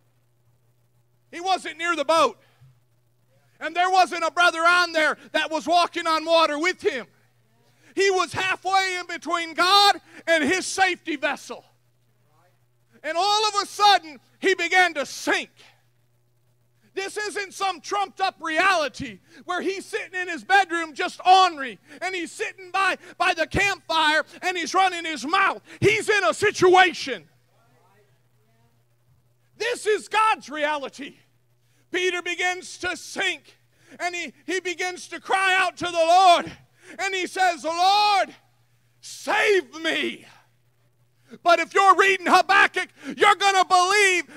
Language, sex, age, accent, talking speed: English, male, 40-59, American, 135 wpm